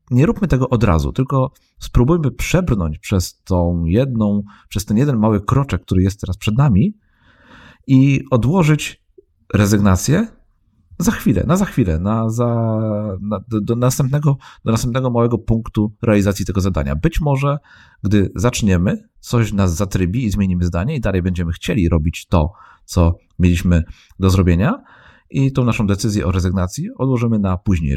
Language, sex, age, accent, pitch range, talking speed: Polish, male, 40-59, native, 90-120 Hz, 140 wpm